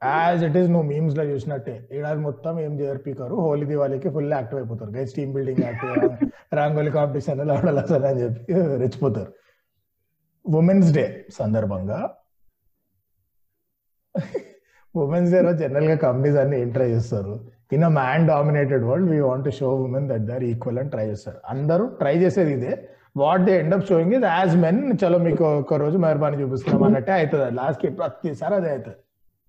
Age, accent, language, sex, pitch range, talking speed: 30-49, native, Telugu, male, 120-160 Hz, 140 wpm